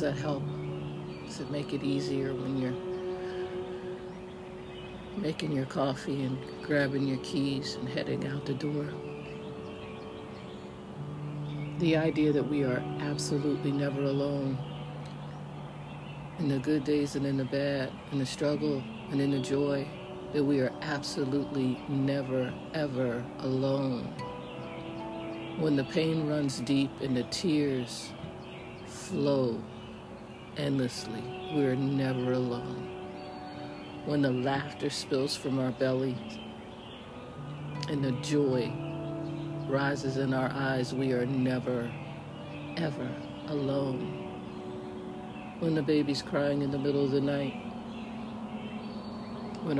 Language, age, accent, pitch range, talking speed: English, 60-79, American, 125-150 Hz, 115 wpm